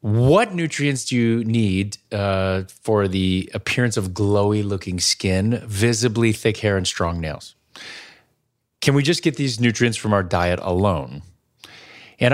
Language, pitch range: English, 105-145 Hz